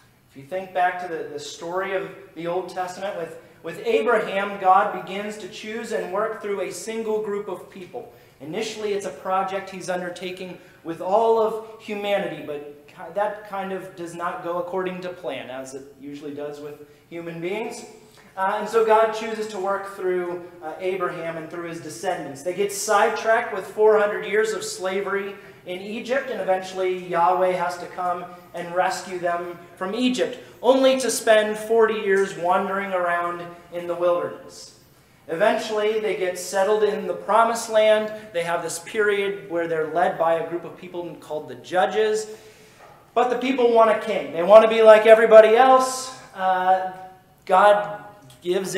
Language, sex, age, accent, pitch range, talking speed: English, male, 30-49, American, 175-215 Hz, 170 wpm